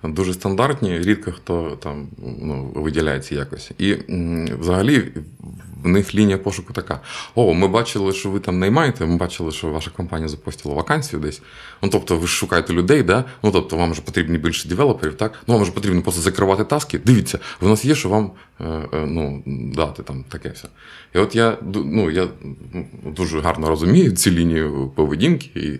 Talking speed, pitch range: 170 wpm, 80-100 Hz